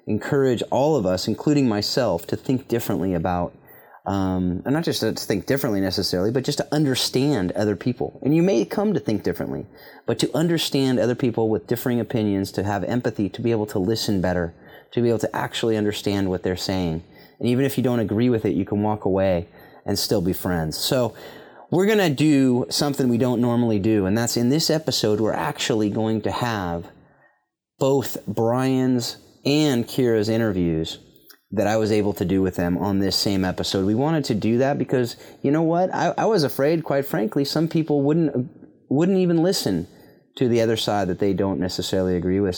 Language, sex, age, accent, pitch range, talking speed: English, male, 30-49, American, 95-130 Hz, 200 wpm